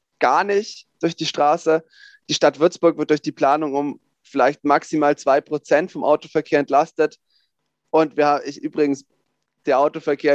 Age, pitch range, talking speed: 20-39, 135-155 Hz, 150 wpm